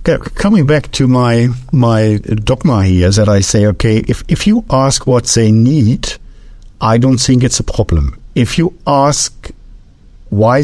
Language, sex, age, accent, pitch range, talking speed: English, male, 60-79, German, 115-150 Hz, 165 wpm